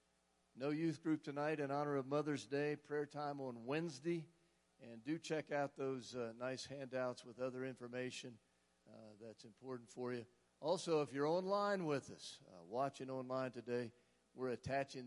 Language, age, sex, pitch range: English, 50-69, male, 110-145 Hz